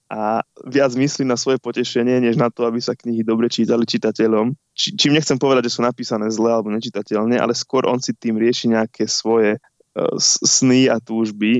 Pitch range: 110-130 Hz